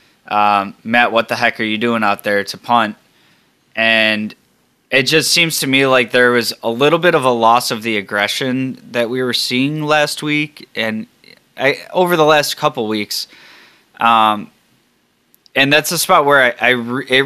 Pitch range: 105-130 Hz